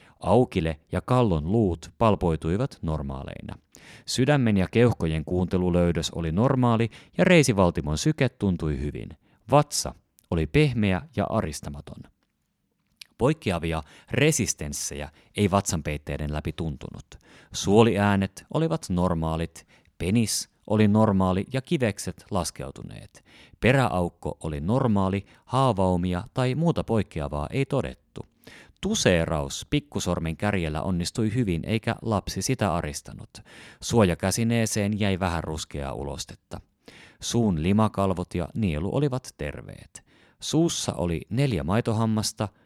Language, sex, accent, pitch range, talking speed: Finnish, male, native, 80-115 Hz, 100 wpm